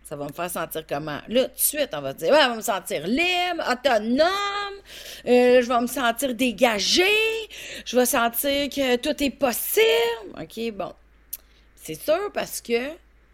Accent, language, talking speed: Canadian, French, 180 wpm